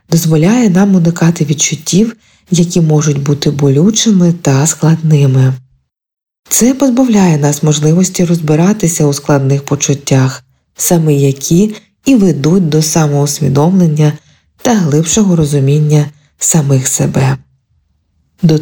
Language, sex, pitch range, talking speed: Ukrainian, female, 145-185 Hz, 95 wpm